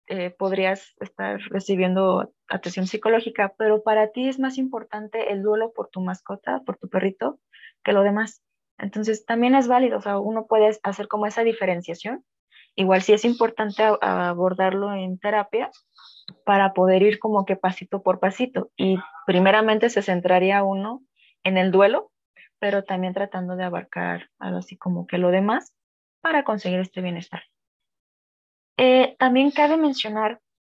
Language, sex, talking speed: Spanish, female, 155 wpm